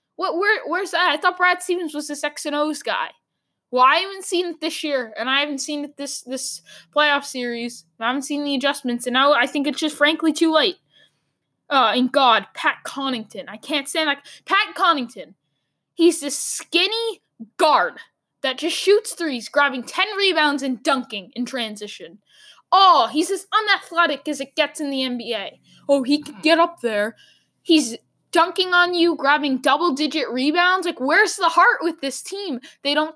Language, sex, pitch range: English, female, 255-335 Hz